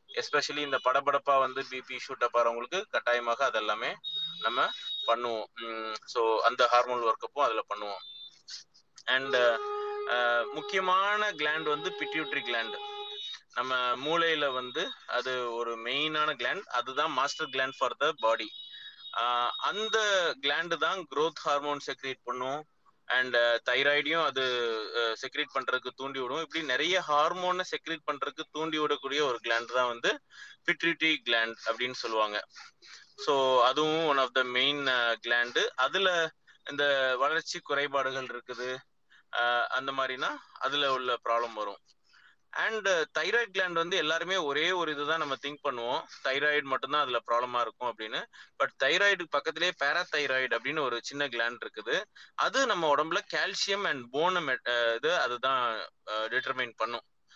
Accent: native